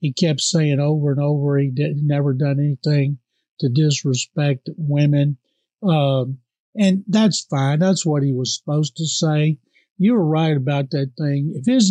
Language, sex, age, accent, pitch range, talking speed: English, male, 50-69, American, 145-185 Hz, 170 wpm